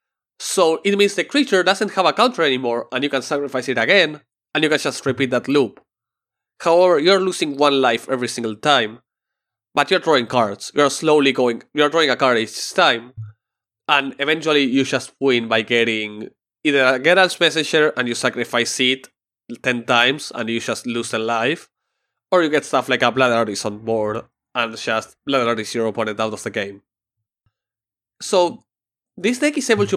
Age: 20-39